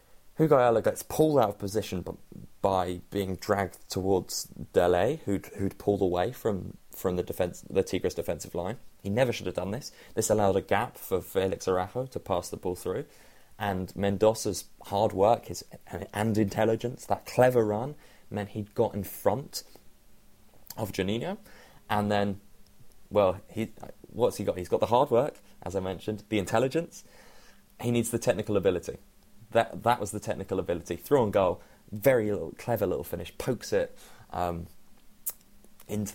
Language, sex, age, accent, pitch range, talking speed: English, male, 20-39, British, 95-120 Hz, 165 wpm